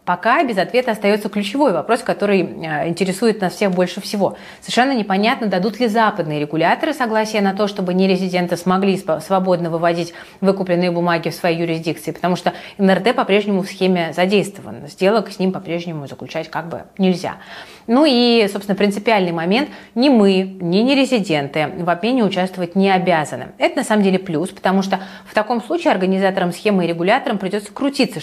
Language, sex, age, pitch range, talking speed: Russian, female, 30-49, 175-220 Hz, 160 wpm